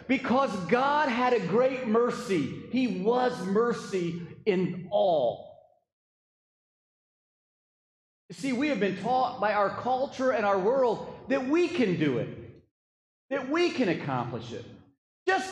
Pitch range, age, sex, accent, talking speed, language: 210-270 Hz, 40-59, male, American, 130 wpm, English